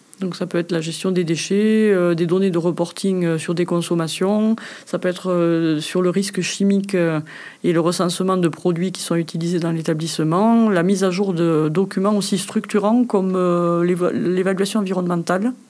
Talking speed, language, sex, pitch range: 185 wpm, French, female, 170-200 Hz